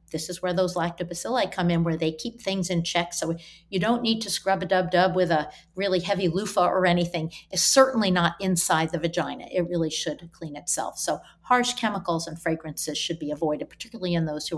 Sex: female